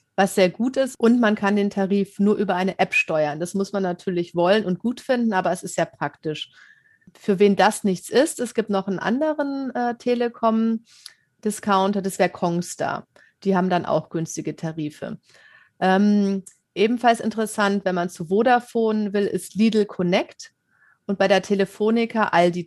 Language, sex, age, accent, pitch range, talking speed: German, female, 30-49, German, 180-220 Hz, 170 wpm